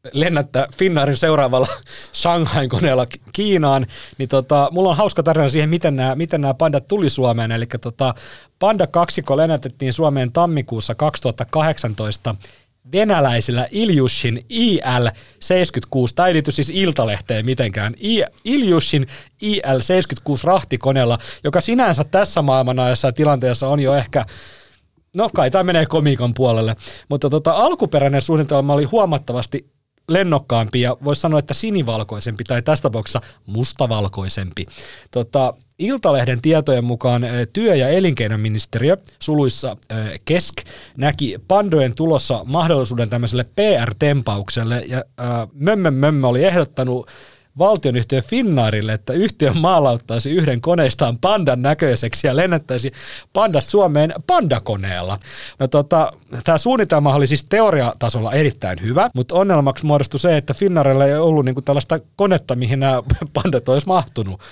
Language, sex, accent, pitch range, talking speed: Finnish, male, native, 120-160 Hz, 120 wpm